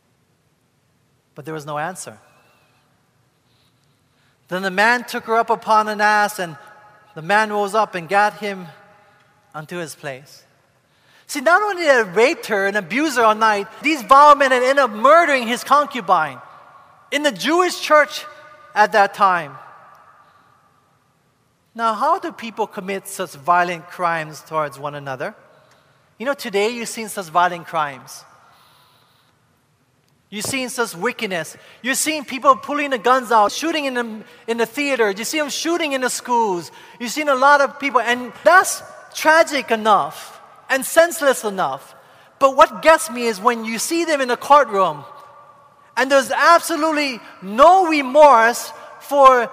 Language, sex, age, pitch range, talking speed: English, male, 30-49, 185-290 Hz, 155 wpm